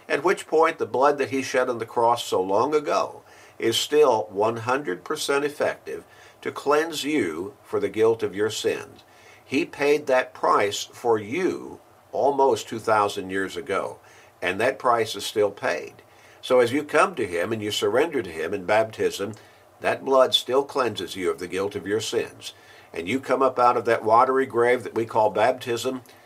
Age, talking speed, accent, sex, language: 50-69, 185 wpm, American, male, English